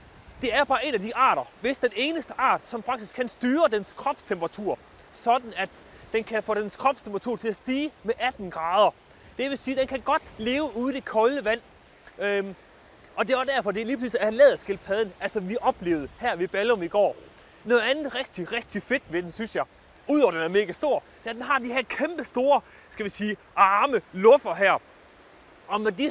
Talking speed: 215 wpm